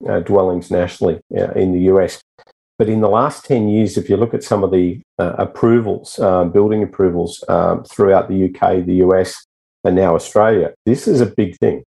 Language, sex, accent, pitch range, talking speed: English, male, Australian, 90-105 Hz, 195 wpm